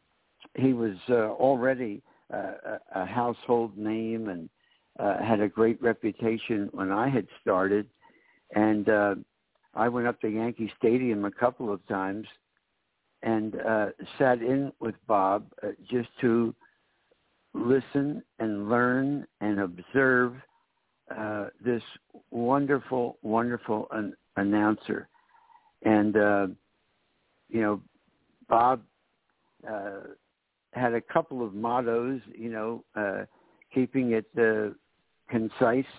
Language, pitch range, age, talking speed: English, 105-130 Hz, 60-79, 110 wpm